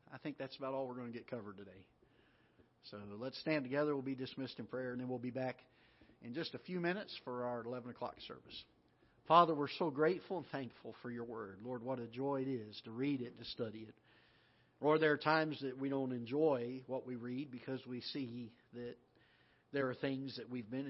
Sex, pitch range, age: male, 120-140 Hz, 50-69